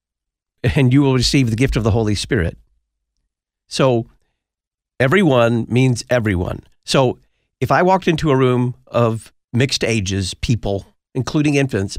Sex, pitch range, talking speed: male, 100-140 Hz, 135 wpm